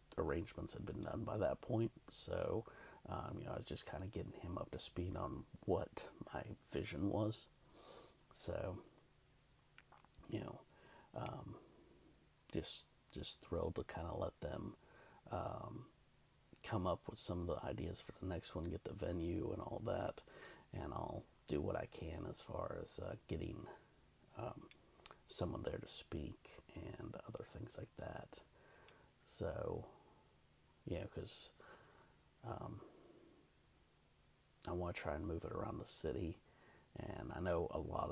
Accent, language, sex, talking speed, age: American, English, male, 155 wpm, 50-69